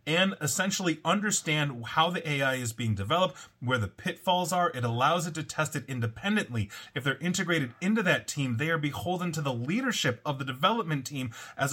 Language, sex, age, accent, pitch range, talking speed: English, male, 30-49, American, 125-180 Hz, 190 wpm